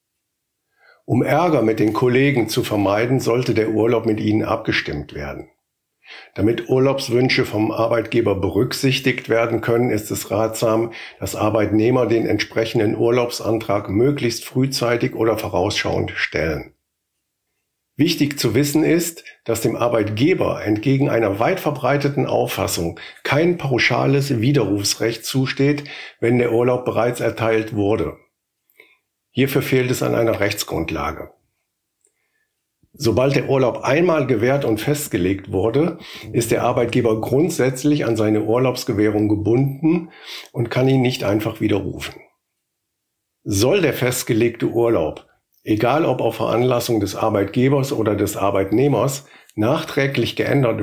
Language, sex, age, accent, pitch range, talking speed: German, male, 50-69, German, 110-135 Hz, 115 wpm